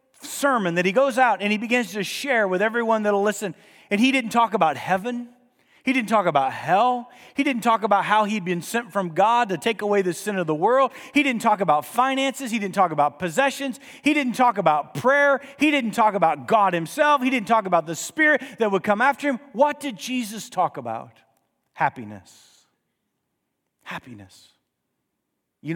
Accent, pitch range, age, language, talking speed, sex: American, 155-240 Hz, 40-59, English, 195 wpm, male